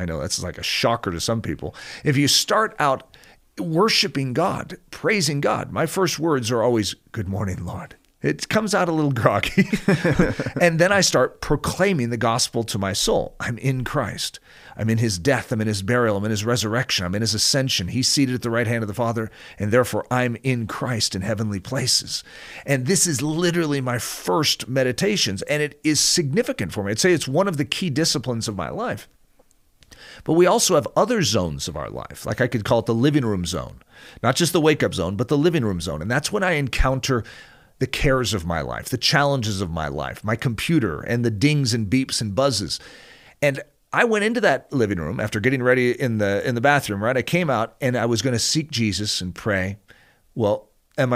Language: English